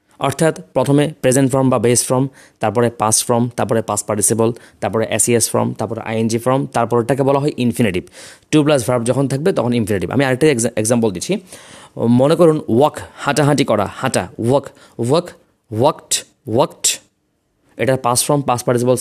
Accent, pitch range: native, 120-160 Hz